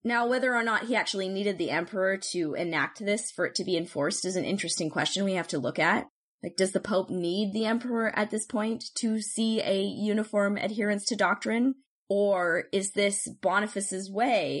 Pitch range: 175-225 Hz